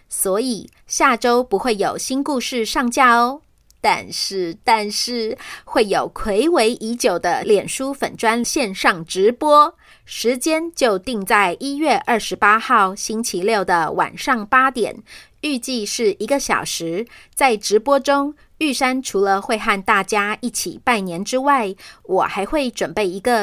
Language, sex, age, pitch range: Chinese, female, 30-49, 210-270 Hz